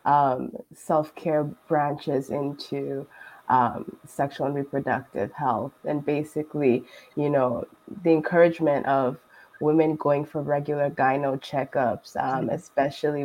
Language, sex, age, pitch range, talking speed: English, female, 20-39, 145-155 Hz, 110 wpm